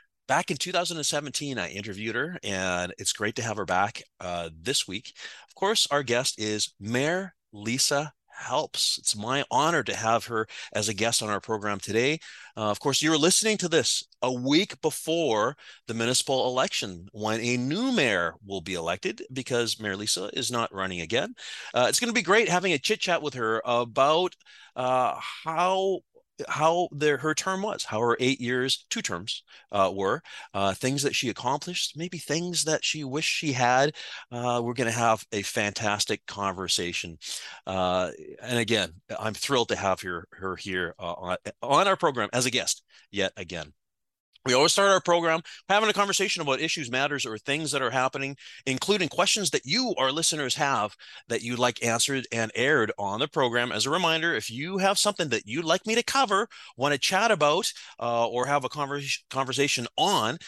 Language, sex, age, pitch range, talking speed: English, male, 30-49, 110-165 Hz, 185 wpm